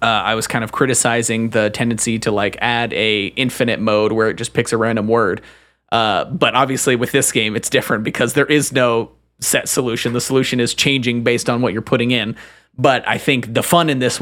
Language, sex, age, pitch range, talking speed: English, male, 30-49, 115-135 Hz, 220 wpm